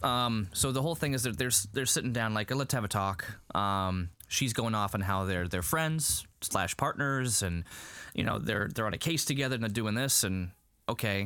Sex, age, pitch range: male, 20-39, 90-120 Hz